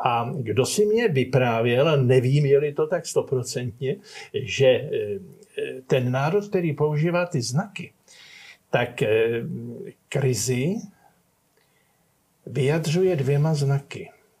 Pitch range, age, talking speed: 135-175 Hz, 50-69, 90 wpm